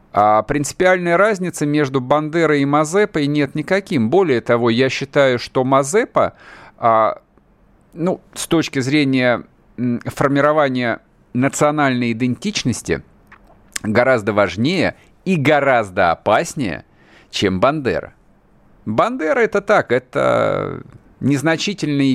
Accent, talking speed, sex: native, 90 wpm, male